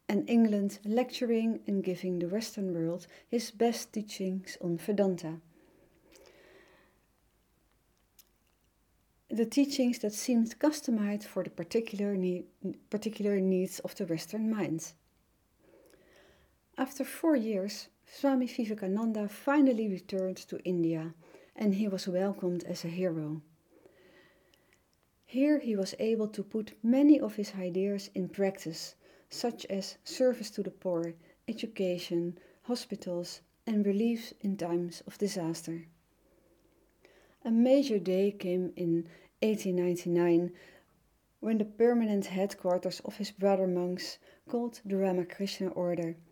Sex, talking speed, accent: female, 115 wpm, Dutch